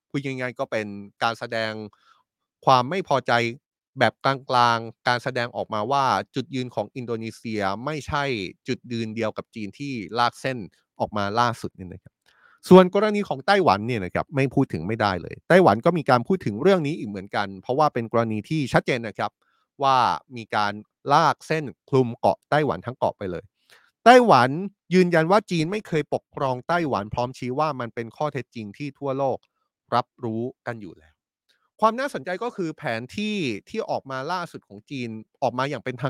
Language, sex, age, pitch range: Thai, male, 30-49, 115-155 Hz